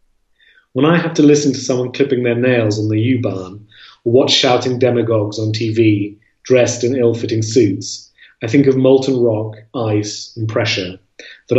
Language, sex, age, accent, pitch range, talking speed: English, male, 30-49, British, 105-125 Hz, 165 wpm